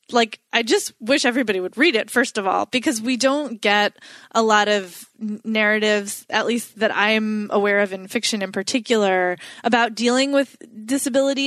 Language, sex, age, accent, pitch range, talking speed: English, female, 20-39, American, 205-265 Hz, 175 wpm